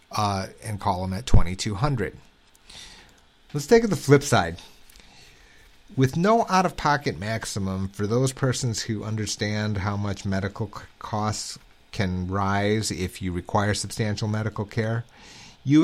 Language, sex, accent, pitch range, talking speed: English, male, American, 100-135 Hz, 130 wpm